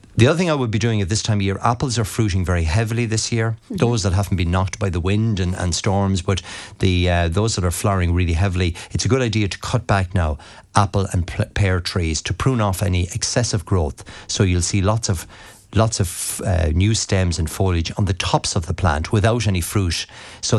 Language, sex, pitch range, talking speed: English, male, 85-105 Hz, 230 wpm